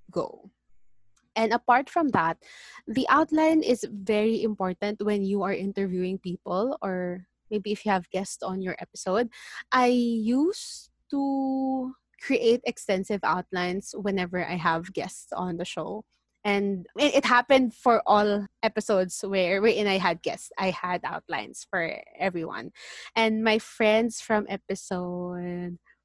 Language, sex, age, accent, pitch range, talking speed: English, female, 20-39, Filipino, 185-245 Hz, 130 wpm